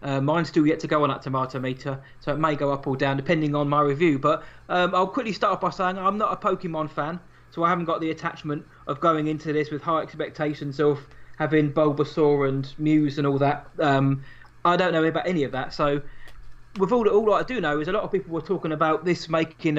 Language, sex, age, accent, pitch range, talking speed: English, male, 20-39, British, 145-175 Hz, 240 wpm